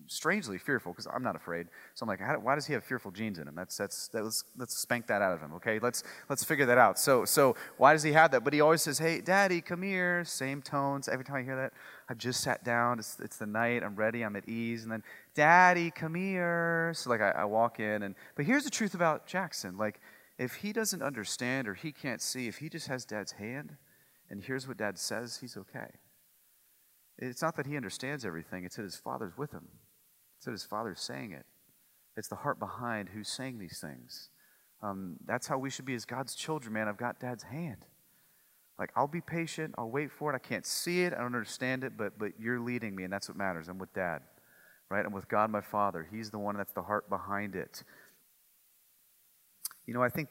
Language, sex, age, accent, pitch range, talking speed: English, male, 30-49, American, 105-145 Hz, 230 wpm